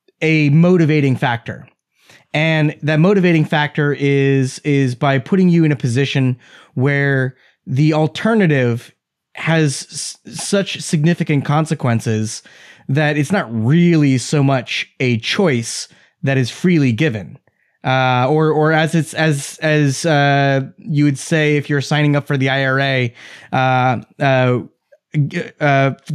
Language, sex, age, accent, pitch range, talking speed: English, male, 20-39, American, 130-160 Hz, 125 wpm